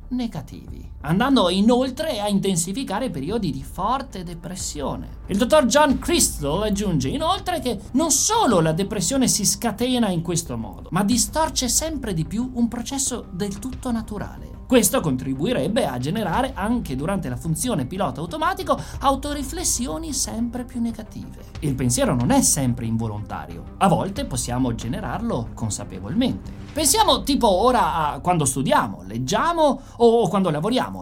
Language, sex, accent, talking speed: Italian, male, native, 135 wpm